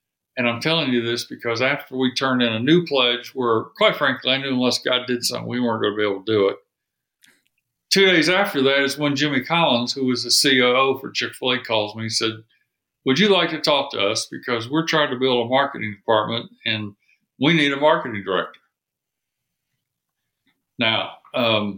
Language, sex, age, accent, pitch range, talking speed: English, male, 60-79, American, 125-155 Hz, 195 wpm